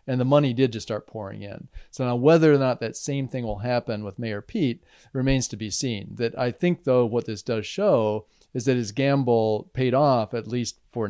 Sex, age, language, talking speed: male, 40-59, English, 225 wpm